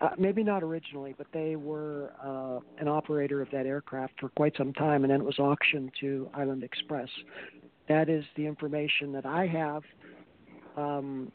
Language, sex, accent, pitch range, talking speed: English, male, American, 140-160 Hz, 175 wpm